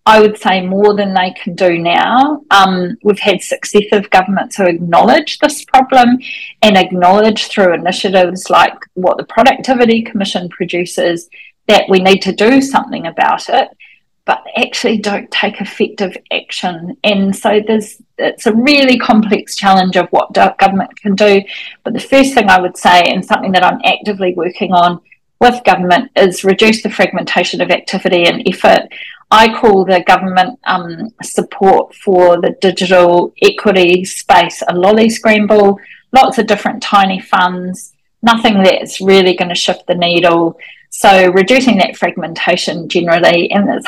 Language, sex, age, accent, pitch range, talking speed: English, female, 40-59, Australian, 180-225 Hz, 155 wpm